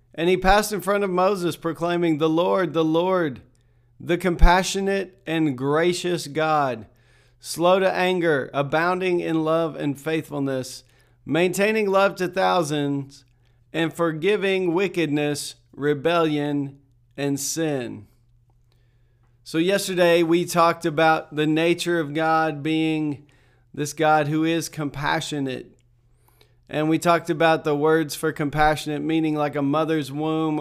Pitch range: 135-170 Hz